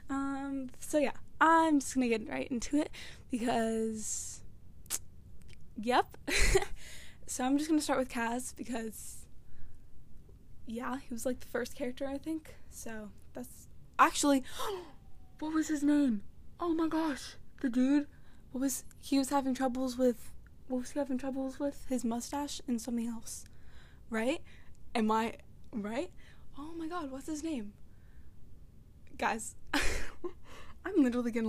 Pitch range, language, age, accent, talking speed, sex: 235-295 Hz, English, 10-29, American, 140 wpm, female